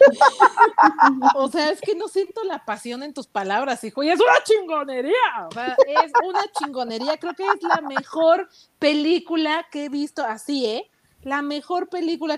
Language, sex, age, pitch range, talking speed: Spanish, female, 40-59, 215-305 Hz, 170 wpm